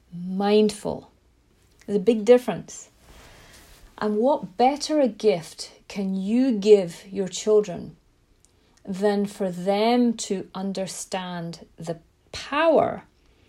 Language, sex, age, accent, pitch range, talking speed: English, female, 40-59, British, 185-225 Hz, 100 wpm